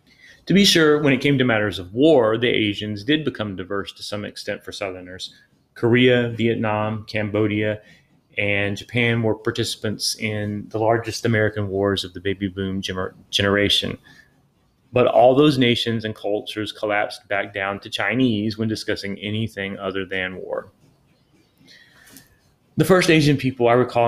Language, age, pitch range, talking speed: English, 30-49, 100-120 Hz, 150 wpm